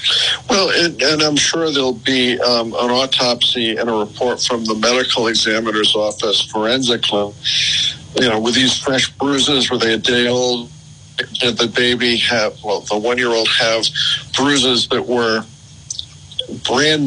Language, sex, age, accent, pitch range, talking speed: English, male, 50-69, American, 110-130 Hz, 150 wpm